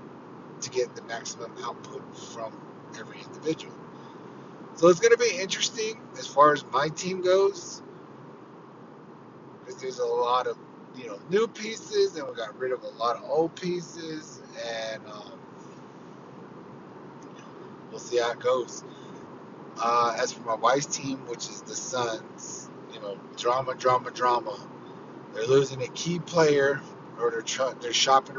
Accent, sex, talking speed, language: American, male, 150 wpm, English